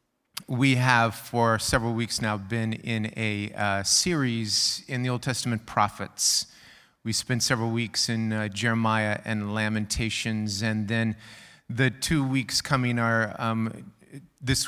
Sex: male